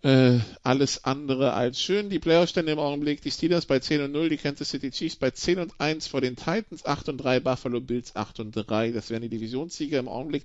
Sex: male